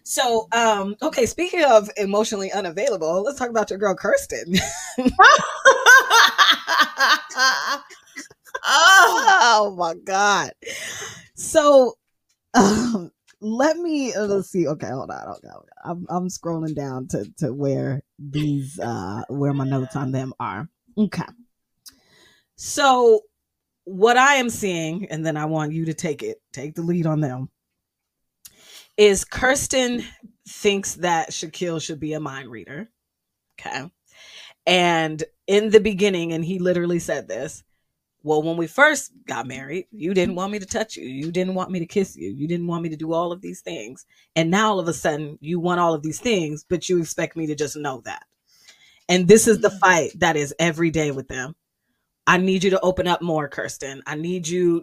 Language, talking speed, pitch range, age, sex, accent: English, 165 wpm, 155-215 Hz, 20-39, female, American